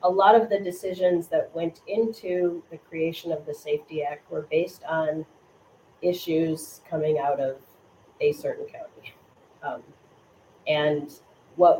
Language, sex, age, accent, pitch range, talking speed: English, female, 30-49, American, 155-180 Hz, 135 wpm